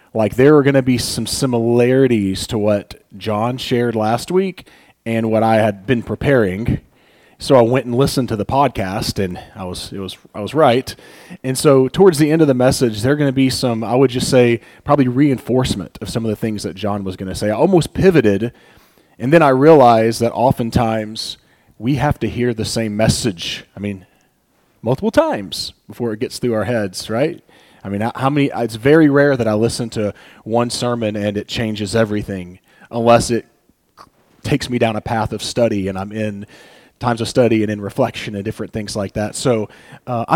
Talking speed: 200 wpm